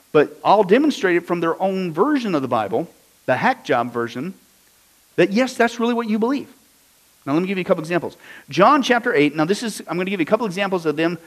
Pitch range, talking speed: 160-235 Hz, 245 wpm